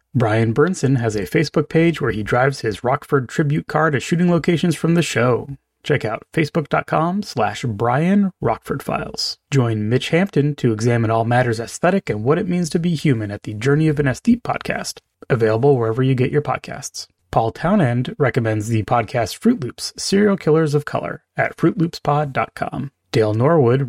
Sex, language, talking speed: male, English, 175 wpm